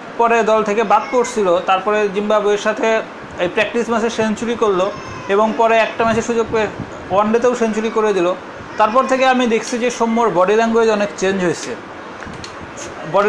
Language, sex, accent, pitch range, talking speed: Bengali, male, native, 180-230 Hz, 155 wpm